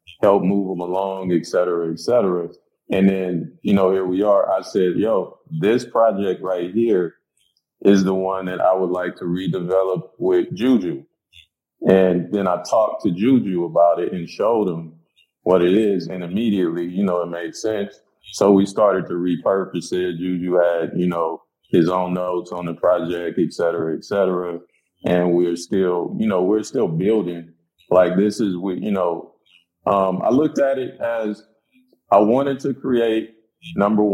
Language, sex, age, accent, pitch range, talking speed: English, male, 20-39, American, 85-105 Hz, 175 wpm